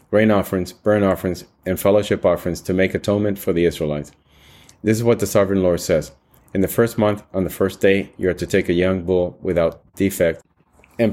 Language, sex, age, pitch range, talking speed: English, male, 30-49, 85-105 Hz, 205 wpm